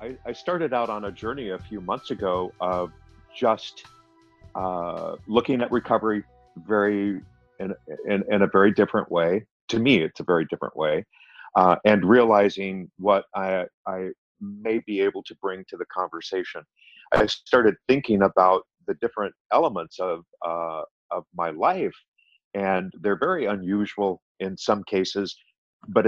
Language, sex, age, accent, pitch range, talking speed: English, male, 50-69, American, 90-110 Hz, 150 wpm